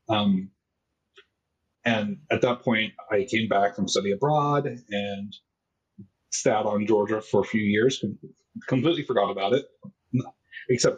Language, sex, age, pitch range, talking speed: English, male, 30-49, 100-115 Hz, 135 wpm